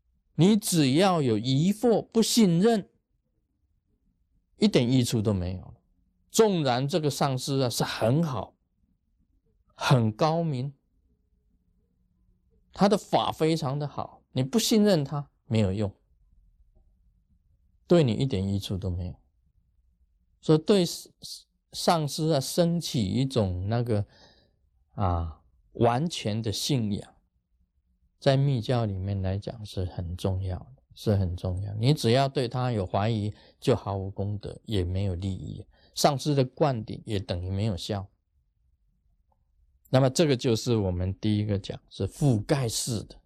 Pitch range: 90-140 Hz